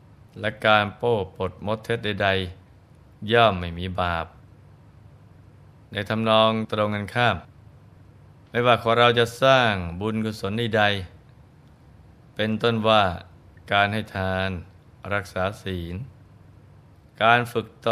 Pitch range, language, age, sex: 95-120 Hz, Thai, 20-39, male